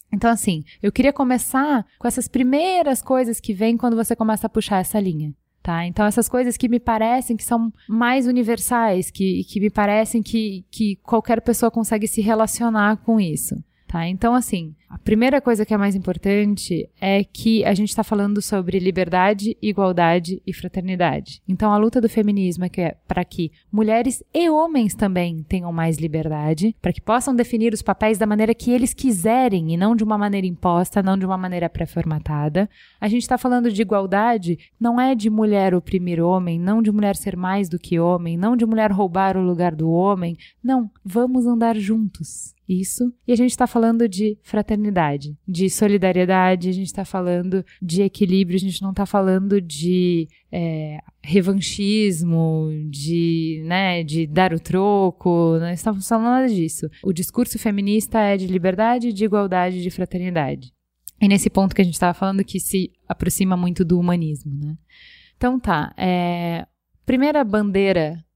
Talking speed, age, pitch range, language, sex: 175 wpm, 20-39, 180-225 Hz, Portuguese, female